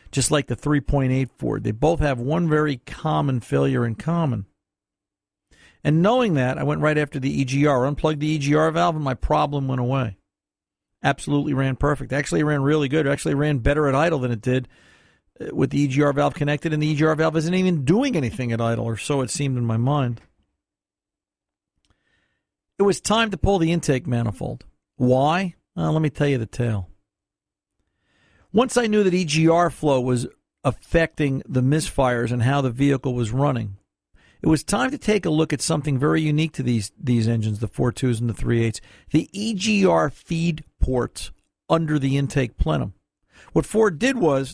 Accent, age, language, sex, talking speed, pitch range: American, 50-69, English, male, 180 wpm, 125-160 Hz